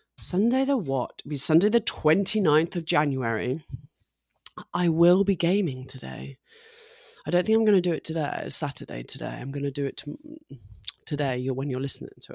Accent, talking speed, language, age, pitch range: British, 175 wpm, English, 20-39, 135-180 Hz